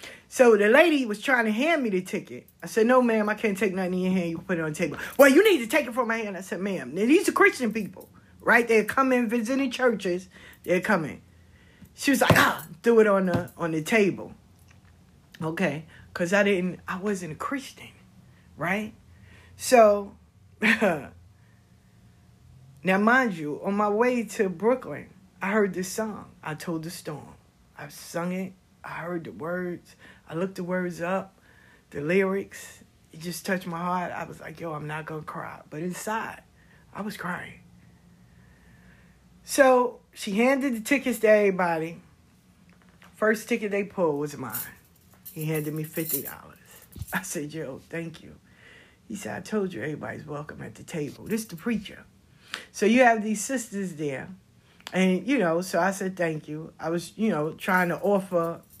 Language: English